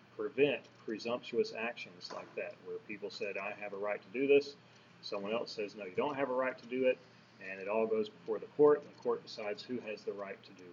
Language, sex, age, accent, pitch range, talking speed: English, male, 30-49, American, 105-140 Hz, 245 wpm